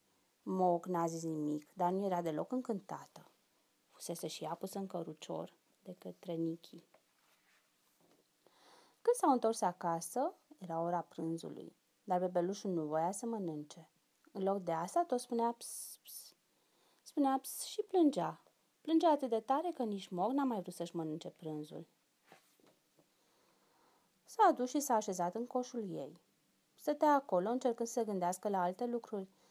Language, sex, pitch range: Romanian, female, 180-270 Hz